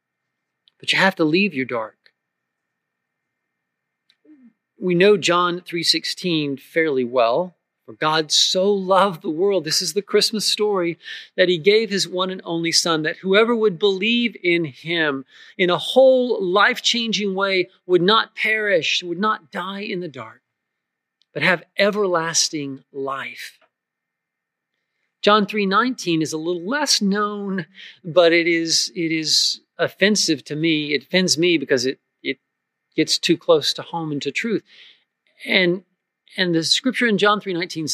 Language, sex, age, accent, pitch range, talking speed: English, male, 40-59, American, 165-225 Hz, 145 wpm